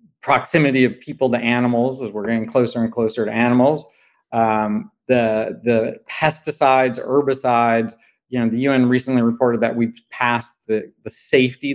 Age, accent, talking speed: 40-59, American, 155 wpm